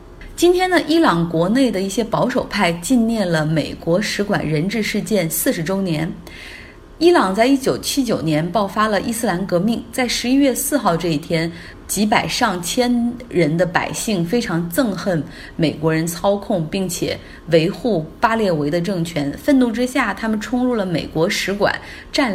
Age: 30-49